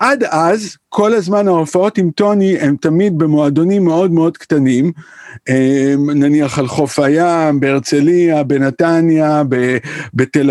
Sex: male